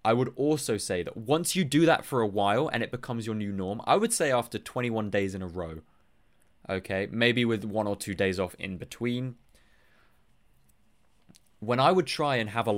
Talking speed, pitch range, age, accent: 205 wpm, 95-135 Hz, 20-39, British